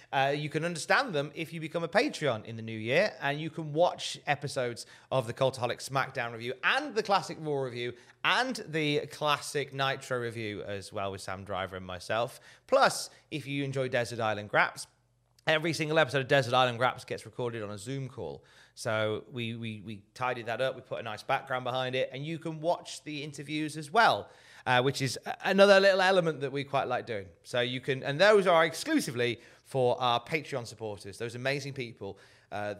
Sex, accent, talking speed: male, British, 200 wpm